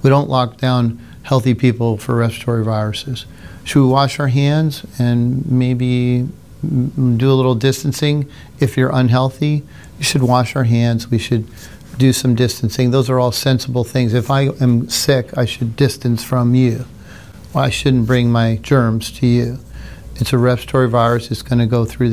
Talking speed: 170 wpm